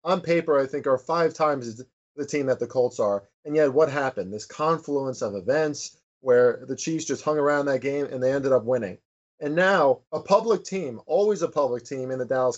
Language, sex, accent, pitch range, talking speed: English, male, American, 130-160 Hz, 220 wpm